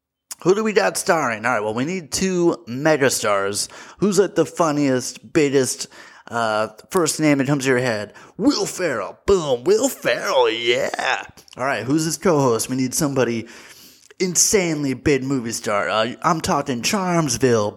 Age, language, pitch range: 30-49, English, 130-210 Hz